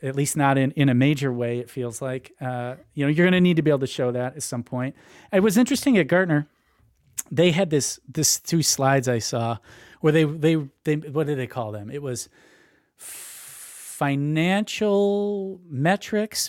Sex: male